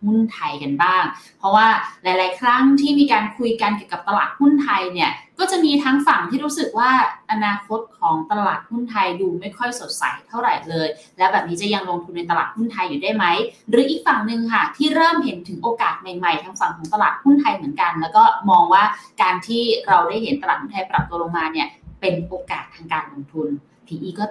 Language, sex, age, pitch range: Thai, female, 20-39, 185-275 Hz